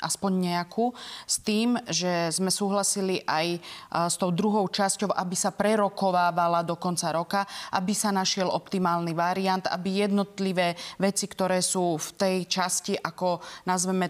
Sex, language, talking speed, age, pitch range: female, Slovak, 140 wpm, 30-49, 175-195 Hz